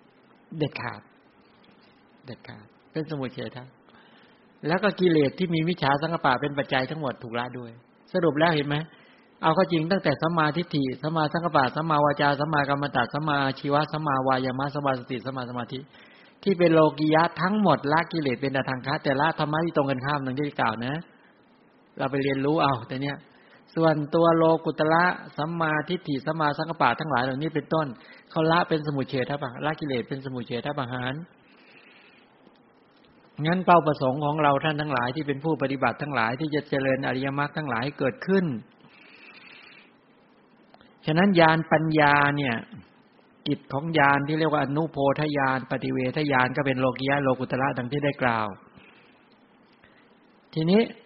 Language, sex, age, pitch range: English, male, 60-79, 135-165 Hz